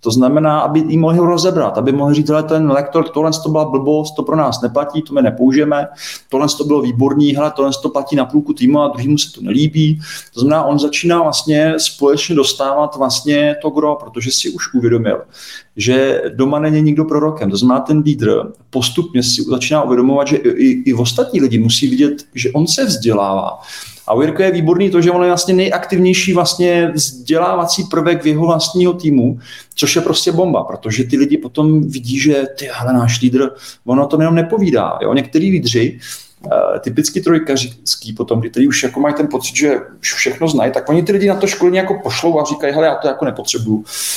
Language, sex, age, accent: Czech, male, 40-59, native